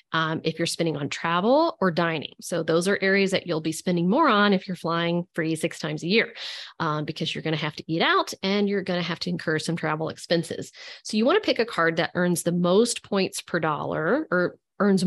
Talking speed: 245 wpm